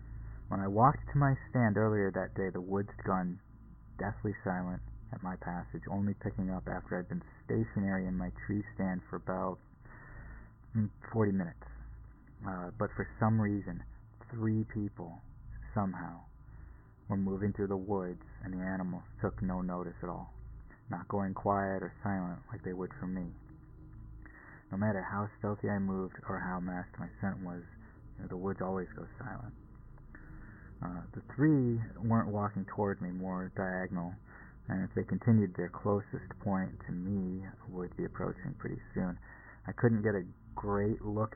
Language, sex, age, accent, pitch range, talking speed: English, male, 20-39, American, 95-110 Hz, 160 wpm